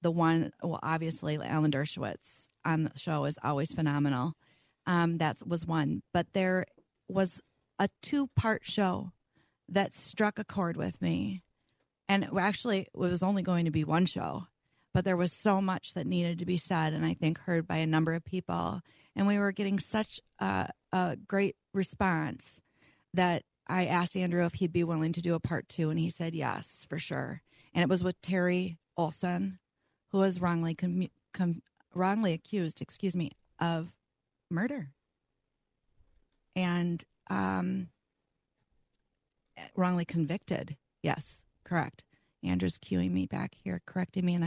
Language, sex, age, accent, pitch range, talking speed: English, female, 30-49, American, 160-185 Hz, 155 wpm